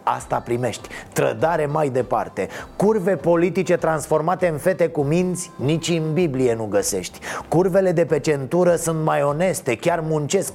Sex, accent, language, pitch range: male, native, Romanian, 145-185 Hz